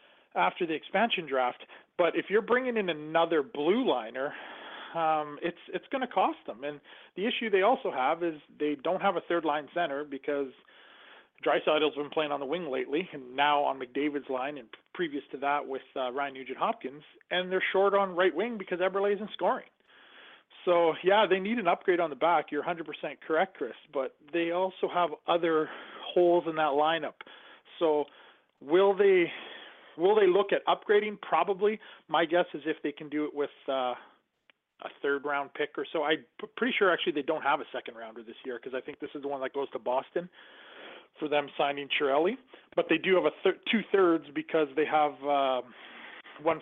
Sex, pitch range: male, 145-185 Hz